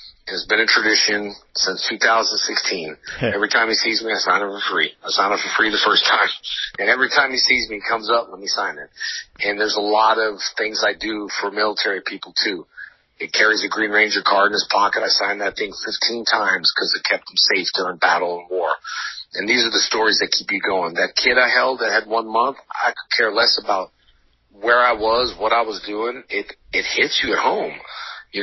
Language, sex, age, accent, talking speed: English, male, 40-59, American, 230 wpm